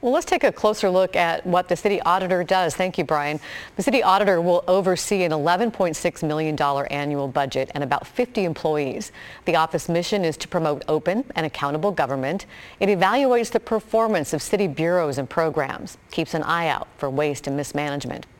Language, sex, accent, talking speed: English, female, American, 185 wpm